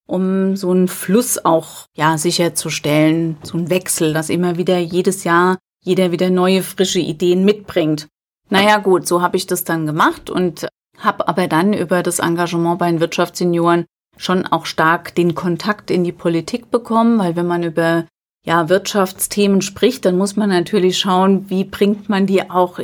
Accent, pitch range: German, 175-205 Hz